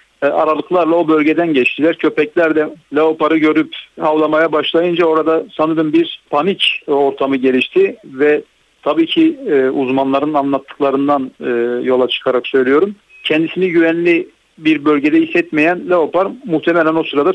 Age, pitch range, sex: 60-79, 135-170 Hz, male